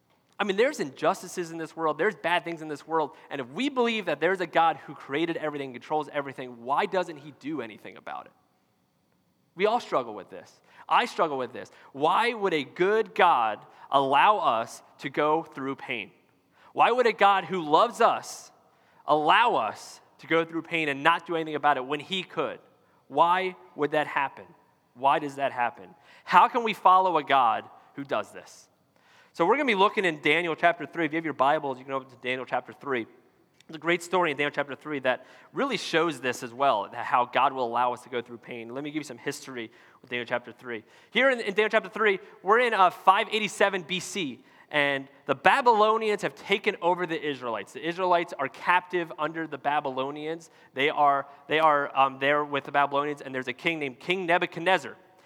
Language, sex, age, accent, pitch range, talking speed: English, male, 30-49, American, 140-180 Hz, 205 wpm